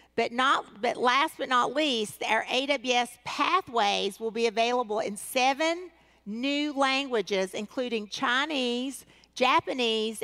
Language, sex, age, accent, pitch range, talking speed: English, female, 50-69, American, 210-250 Hz, 115 wpm